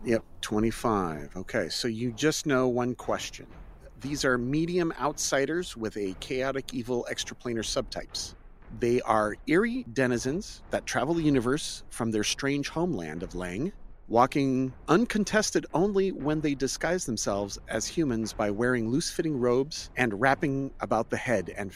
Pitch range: 105-135 Hz